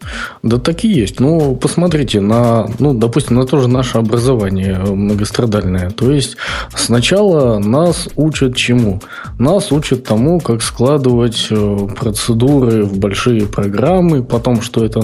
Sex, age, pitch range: male, 20-39, 110-130 Hz